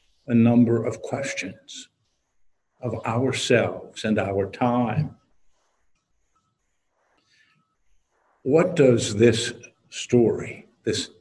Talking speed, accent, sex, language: 75 wpm, American, male, English